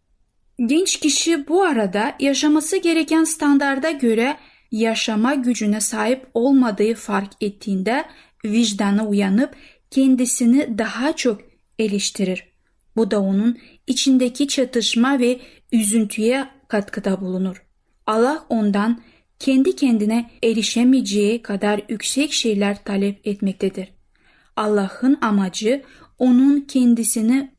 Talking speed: 95 wpm